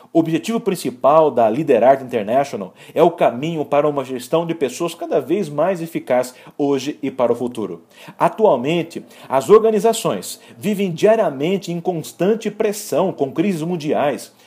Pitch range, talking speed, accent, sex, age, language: 155-230 Hz, 140 wpm, Brazilian, male, 40-59, English